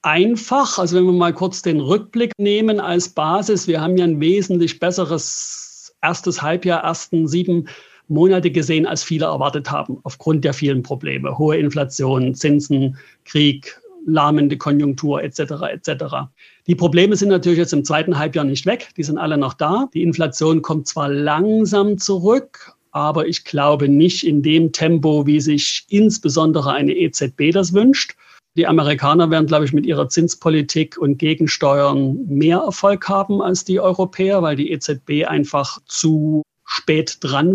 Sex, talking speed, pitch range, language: male, 155 wpm, 150-190 Hz, German